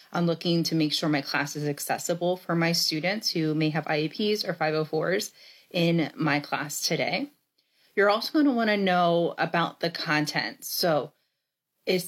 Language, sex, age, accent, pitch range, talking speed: English, female, 30-49, American, 155-205 Hz, 170 wpm